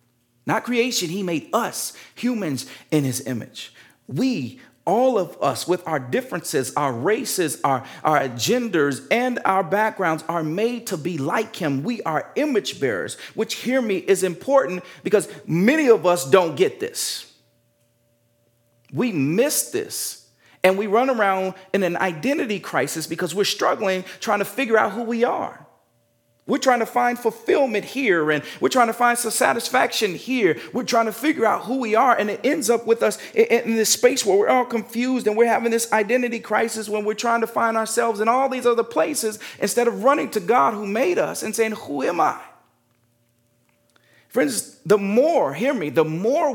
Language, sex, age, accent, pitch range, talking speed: English, male, 40-59, American, 150-235 Hz, 180 wpm